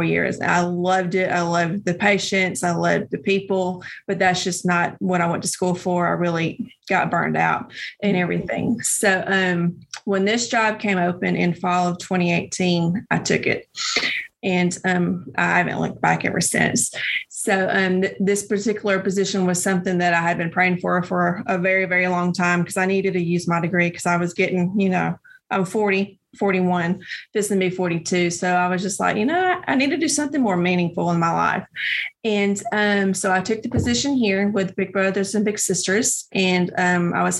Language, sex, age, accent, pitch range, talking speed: English, female, 30-49, American, 180-200 Hz, 200 wpm